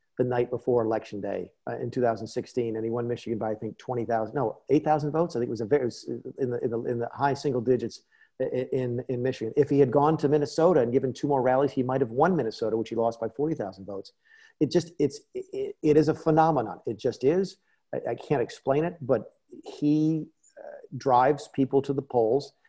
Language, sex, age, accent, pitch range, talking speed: English, male, 50-69, American, 120-155 Hz, 225 wpm